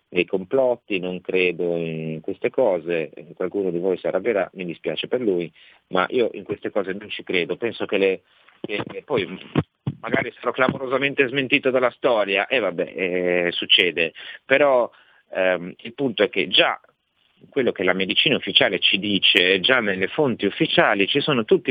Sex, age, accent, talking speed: male, 40-59, native, 165 wpm